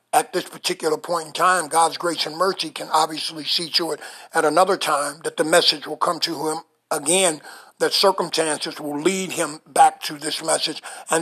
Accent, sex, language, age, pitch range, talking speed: American, male, English, 60-79, 155-185 Hz, 195 wpm